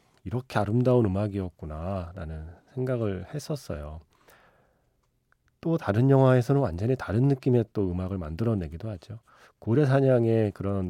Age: 30-49